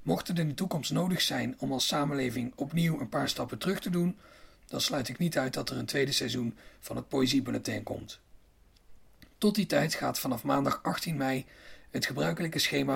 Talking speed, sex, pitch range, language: 195 wpm, male, 105-160 Hz, Dutch